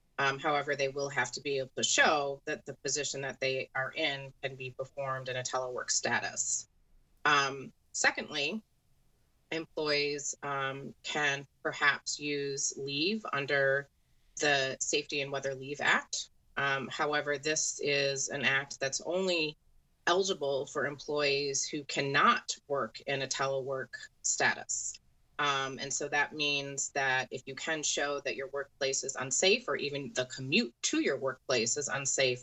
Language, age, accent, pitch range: English, 30-49, American, 135-145 Hz